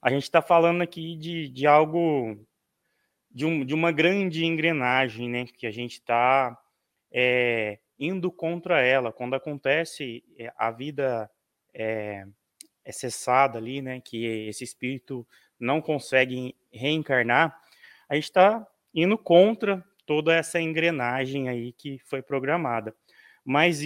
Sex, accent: male, Brazilian